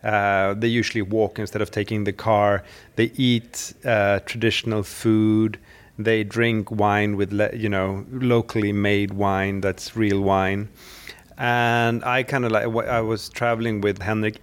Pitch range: 105-120 Hz